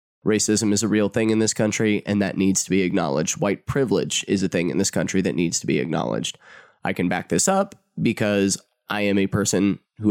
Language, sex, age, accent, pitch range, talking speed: English, male, 20-39, American, 95-110 Hz, 225 wpm